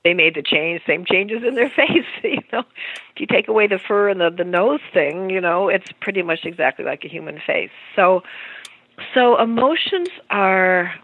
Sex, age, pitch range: female, 50-69, 170-225 Hz